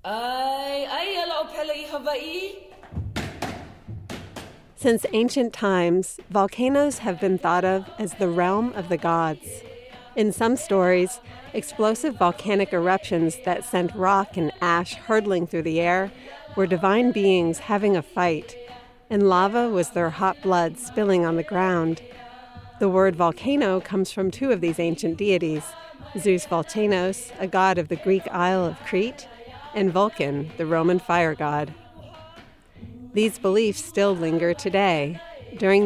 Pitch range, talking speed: 170-220 Hz, 130 wpm